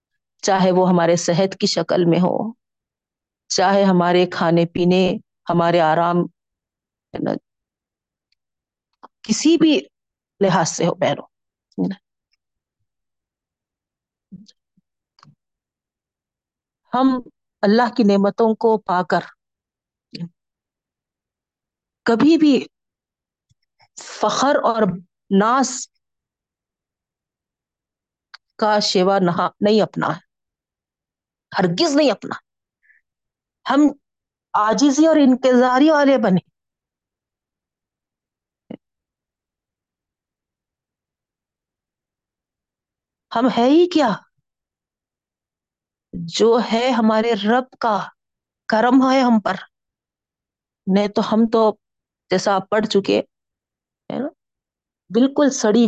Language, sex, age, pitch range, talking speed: Urdu, female, 50-69, 180-250 Hz, 75 wpm